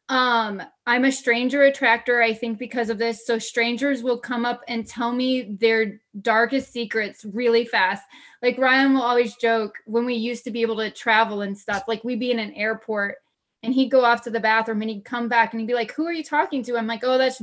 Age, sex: 20-39, female